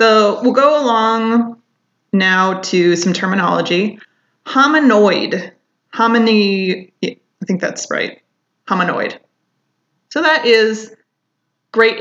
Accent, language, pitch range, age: American, English, 180-230 Hz, 20-39